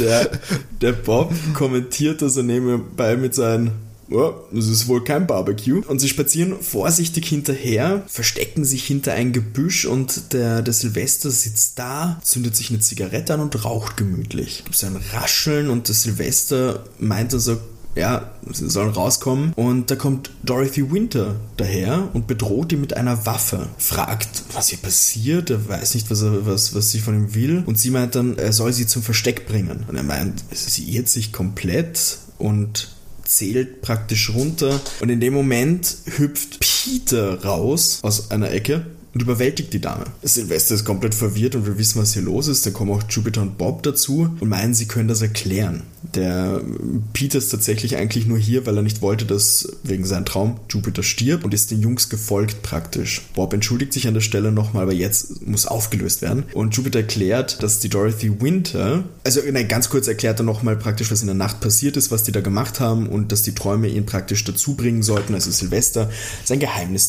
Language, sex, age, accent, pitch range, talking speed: German, male, 20-39, German, 105-130 Hz, 185 wpm